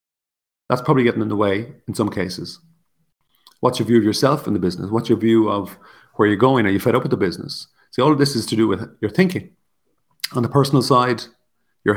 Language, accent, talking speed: English, Irish, 230 wpm